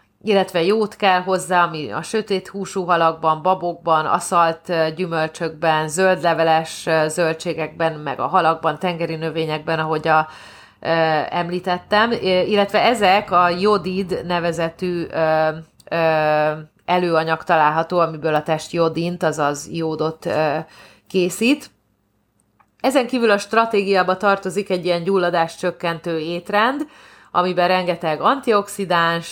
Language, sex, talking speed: Hungarian, female, 110 wpm